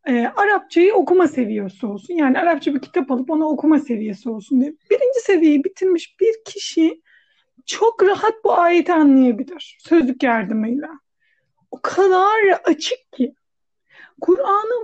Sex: female